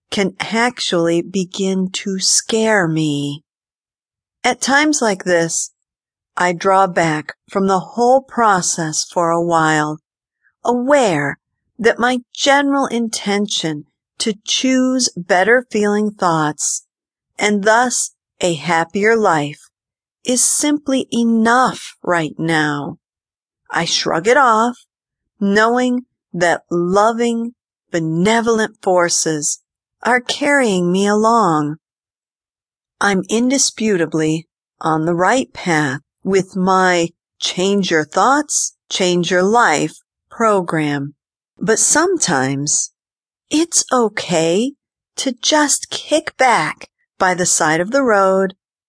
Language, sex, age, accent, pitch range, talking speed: English, female, 50-69, American, 155-230 Hz, 100 wpm